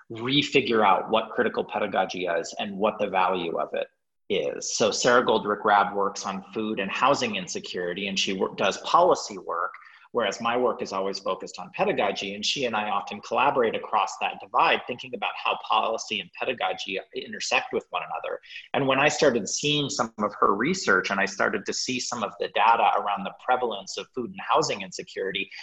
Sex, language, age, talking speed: male, English, 40-59, 185 wpm